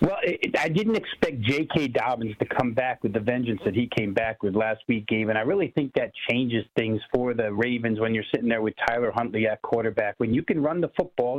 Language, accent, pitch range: English, American, 120-150 Hz